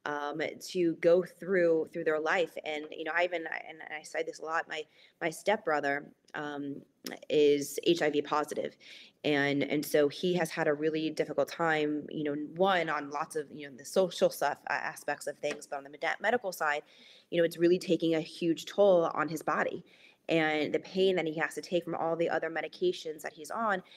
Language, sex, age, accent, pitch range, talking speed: English, female, 20-39, American, 155-180 Hz, 210 wpm